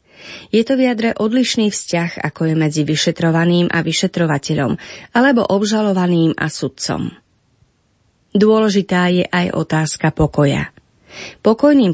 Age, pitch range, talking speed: 30-49, 160-210 Hz, 105 wpm